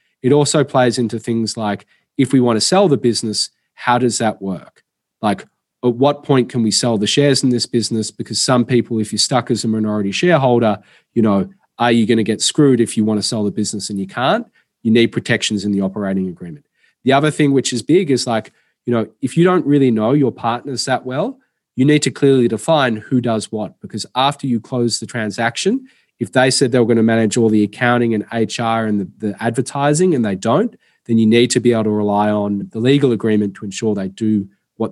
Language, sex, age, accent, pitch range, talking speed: English, male, 30-49, Australian, 105-130 Hz, 230 wpm